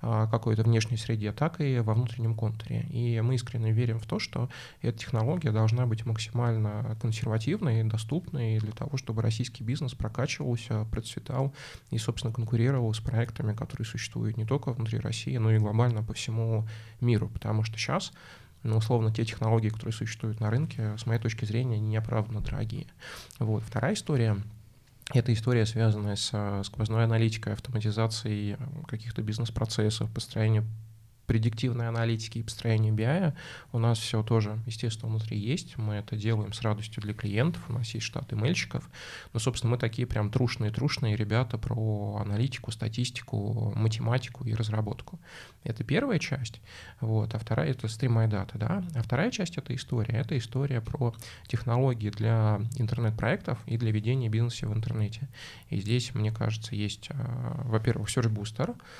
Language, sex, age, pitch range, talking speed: Russian, male, 20-39, 110-125 Hz, 155 wpm